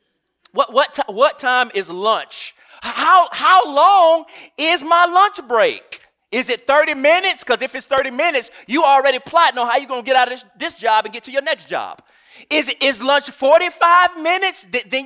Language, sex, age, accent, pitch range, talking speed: English, male, 30-49, American, 255-335 Hz, 200 wpm